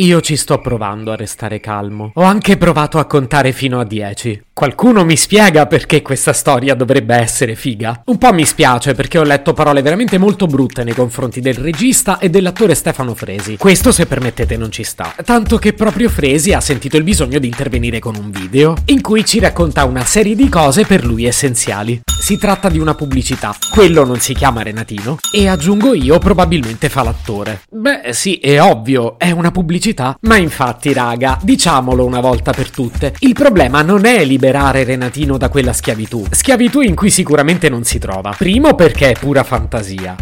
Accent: native